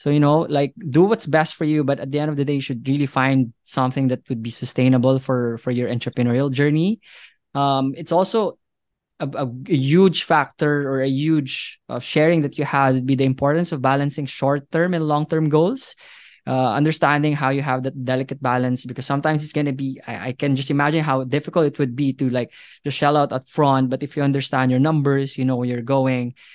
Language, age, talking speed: English, 20-39, 220 wpm